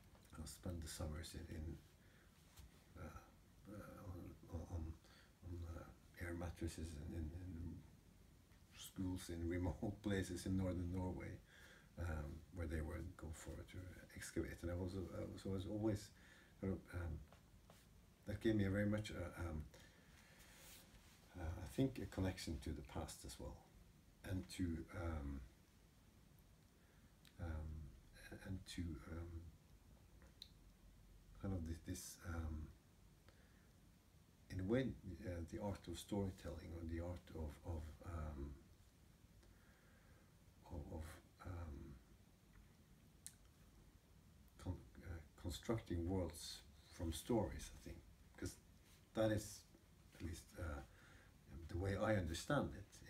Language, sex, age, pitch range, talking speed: English, male, 60-79, 80-95 Hz, 120 wpm